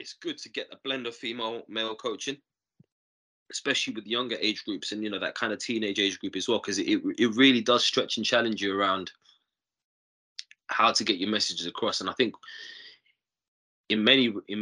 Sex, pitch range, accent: male, 100-140 Hz, British